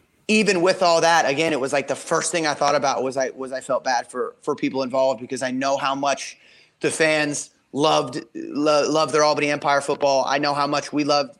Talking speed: 230 wpm